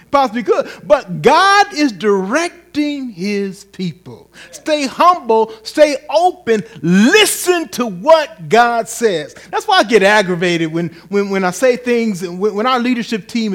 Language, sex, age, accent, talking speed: English, male, 40-59, American, 145 wpm